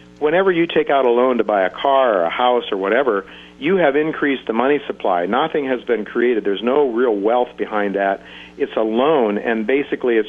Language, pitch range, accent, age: English, 100-135 Hz, American, 50-69